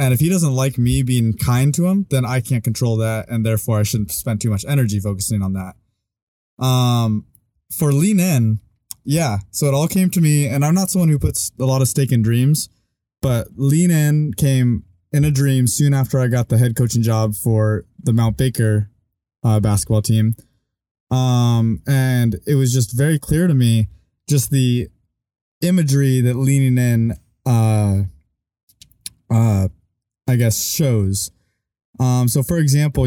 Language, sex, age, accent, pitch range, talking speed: English, male, 20-39, American, 110-135 Hz, 170 wpm